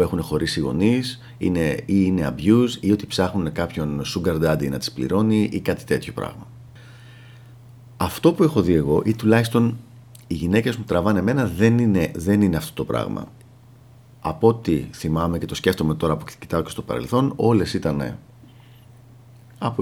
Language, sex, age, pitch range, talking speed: Greek, male, 40-59, 95-120 Hz, 165 wpm